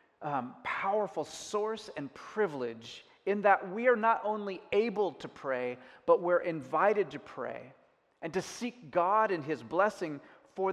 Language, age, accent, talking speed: English, 30-49, American, 150 wpm